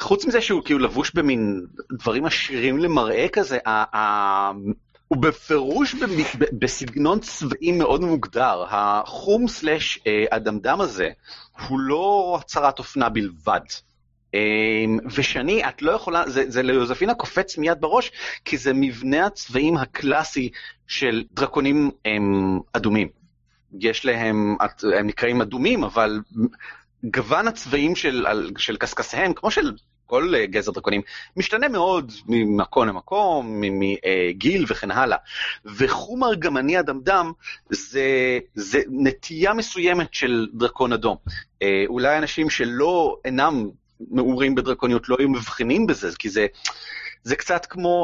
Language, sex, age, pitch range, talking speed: Hebrew, male, 30-49, 110-155 Hz, 120 wpm